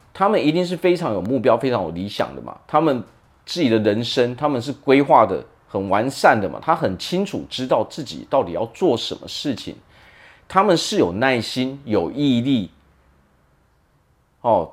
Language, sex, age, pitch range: Chinese, male, 40-59, 120-195 Hz